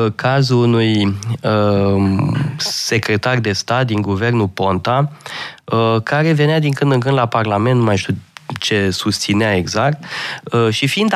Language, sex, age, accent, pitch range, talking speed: Romanian, male, 20-39, native, 115-160 Hz, 130 wpm